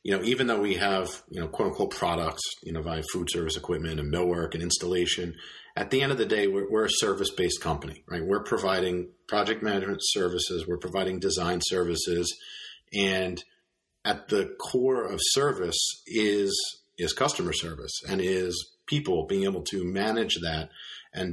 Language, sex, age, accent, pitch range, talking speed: English, male, 40-59, American, 90-110 Hz, 170 wpm